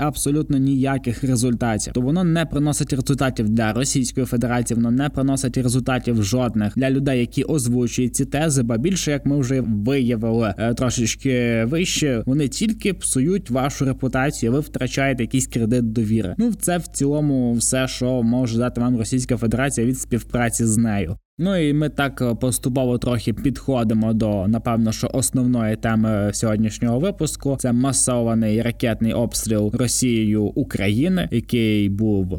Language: Ukrainian